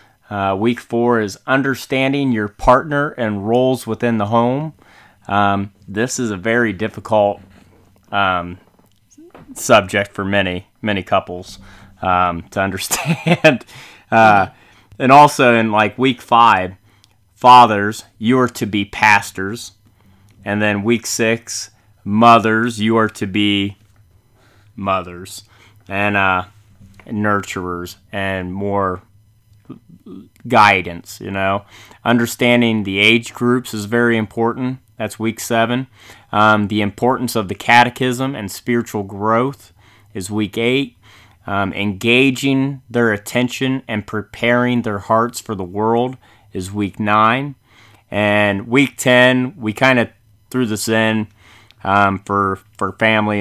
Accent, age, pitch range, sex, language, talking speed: American, 30-49, 100-120 Hz, male, English, 120 wpm